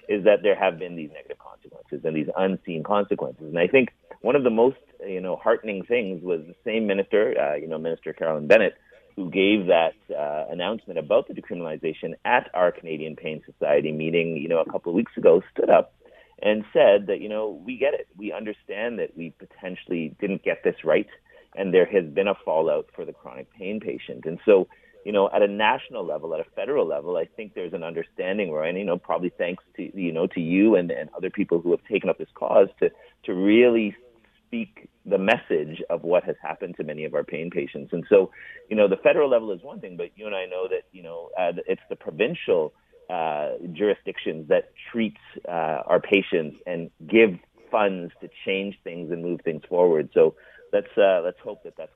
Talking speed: 210 wpm